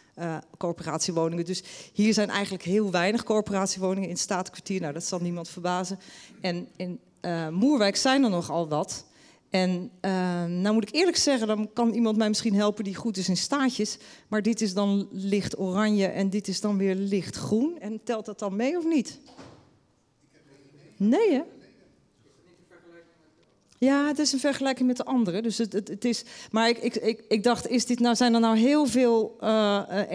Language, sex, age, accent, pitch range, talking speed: Dutch, female, 40-59, Dutch, 185-230 Hz, 185 wpm